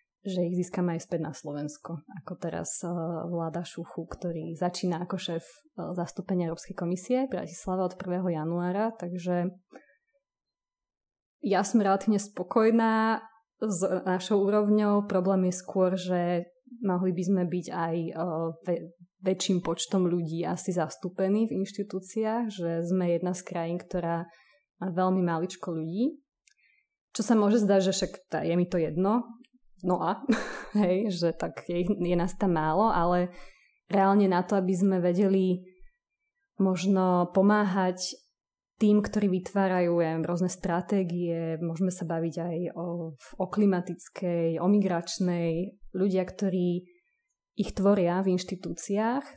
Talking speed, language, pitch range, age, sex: 130 wpm, Slovak, 175-205 Hz, 20-39, female